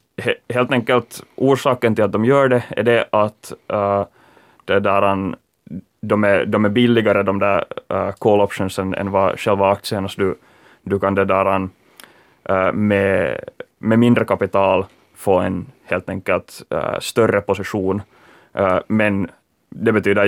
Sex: male